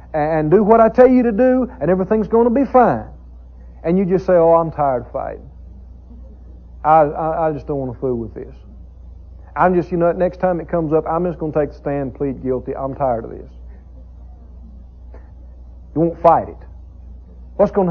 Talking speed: 210 wpm